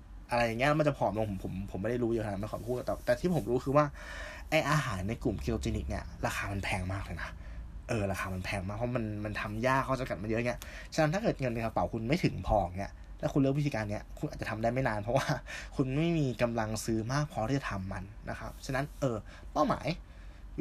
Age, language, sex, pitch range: 20-39, Thai, male, 95-135 Hz